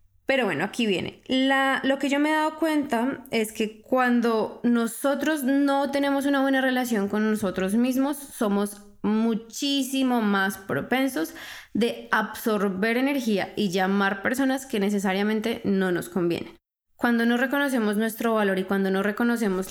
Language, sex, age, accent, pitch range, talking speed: Spanish, female, 20-39, Colombian, 200-260 Hz, 145 wpm